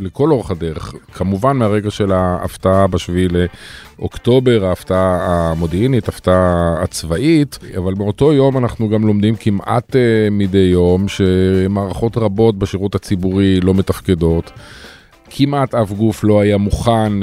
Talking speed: 120 wpm